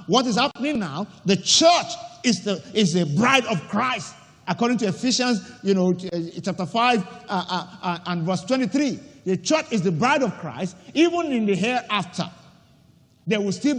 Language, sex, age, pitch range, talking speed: English, male, 50-69, 180-255 Hz, 175 wpm